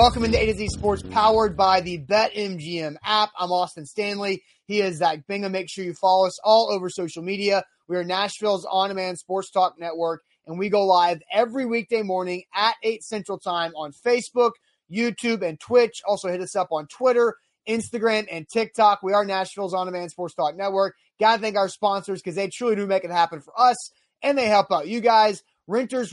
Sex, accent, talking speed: male, American, 200 wpm